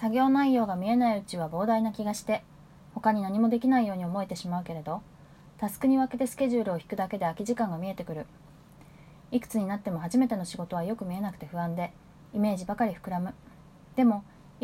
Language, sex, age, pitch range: Japanese, female, 20-39, 170-230 Hz